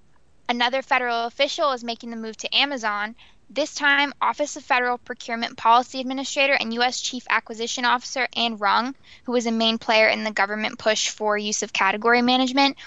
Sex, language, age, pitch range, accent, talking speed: female, English, 10-29, 215-250 Hz, American, 175 wpm